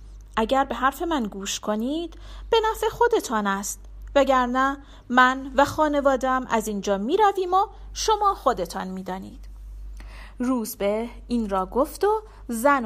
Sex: female